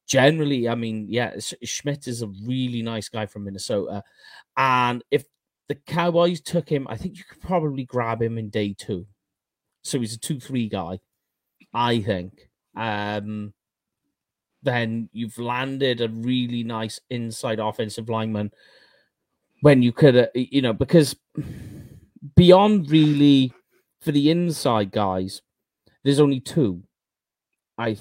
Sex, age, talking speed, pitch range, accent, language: male, 30-49, 135 wpm, 110-140 Hz, British, English